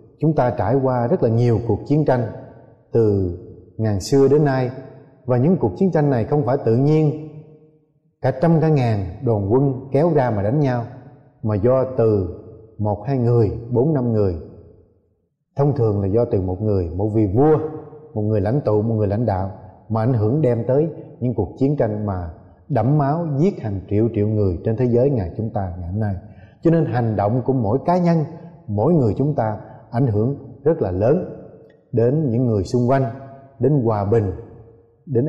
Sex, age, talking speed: male, 20-39, 195 wpm